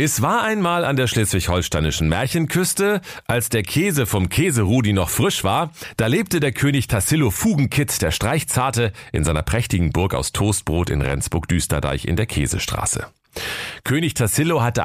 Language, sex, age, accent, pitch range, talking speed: German, male, 40-59, German, 85-125 Hz, 150 wpm